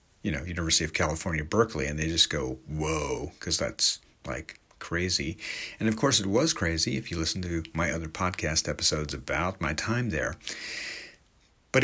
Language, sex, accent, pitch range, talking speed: English, male, American, 85-105 Hz, 170 wpm